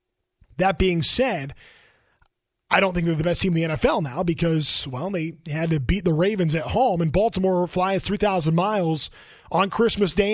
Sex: male